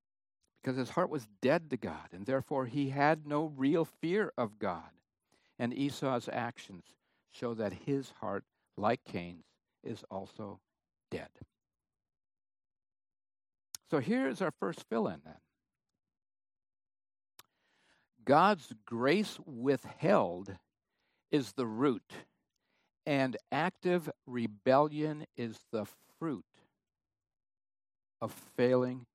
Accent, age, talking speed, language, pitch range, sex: American, 60-79, 100 wpm, English, 95-135 Hz, male